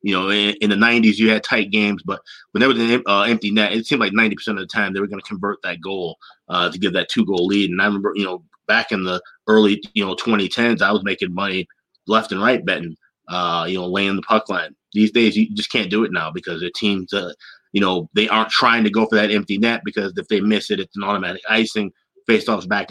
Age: 30-49